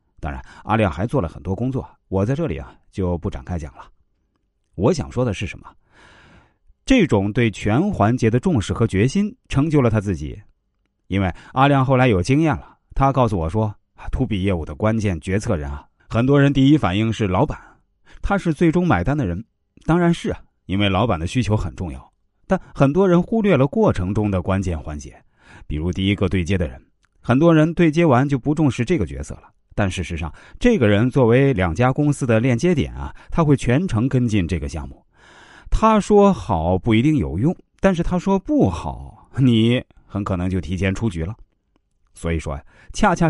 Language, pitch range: Chinese, 90-135 Hz